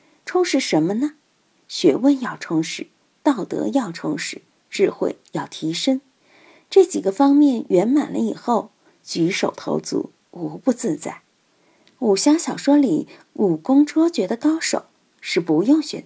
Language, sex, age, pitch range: Chinese, female, 50-69, 205-300 Hz